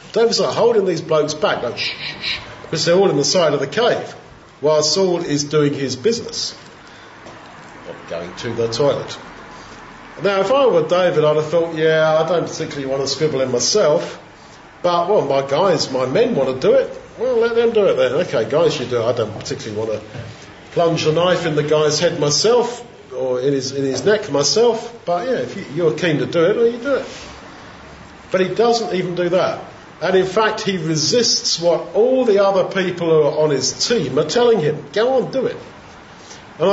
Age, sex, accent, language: 50-69, male, British, English